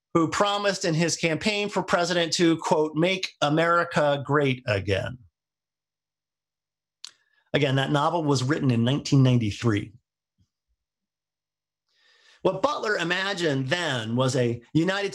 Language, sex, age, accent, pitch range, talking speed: English, male, 40-59, American, 130-190 Hz, 105 wpm